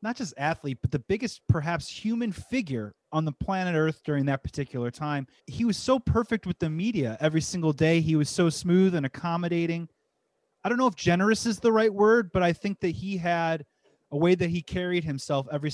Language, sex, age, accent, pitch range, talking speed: English, male, 30-49, American, 145-195 Hz, 210 wpm